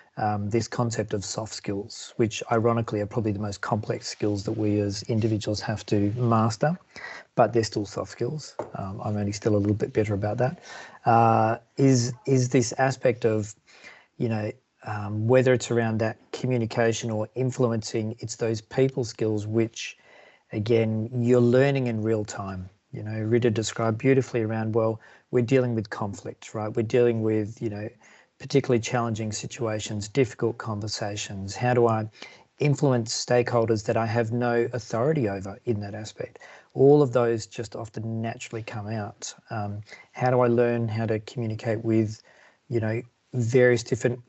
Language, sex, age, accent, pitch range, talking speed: English, male, 40-59, Australian, 110-120 Hz, 165 wpm